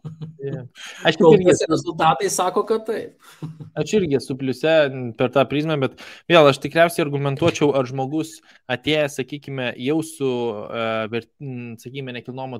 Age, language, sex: 20-39, English, male